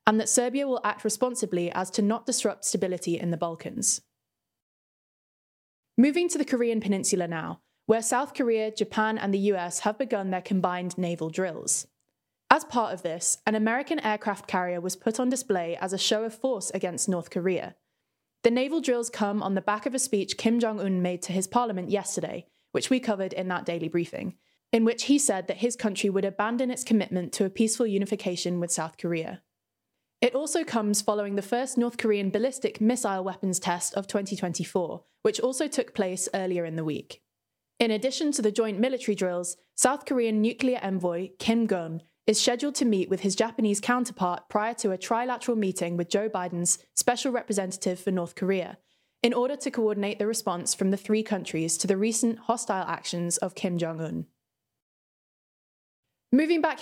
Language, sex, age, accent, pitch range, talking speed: English, female, 20-39, British, 185-235 Hz, 180 wpm